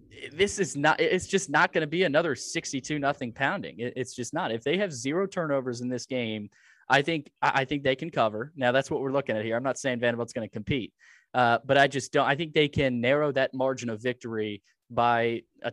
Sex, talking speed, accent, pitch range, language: male, 230 wpm, American, 120-155 Hz, English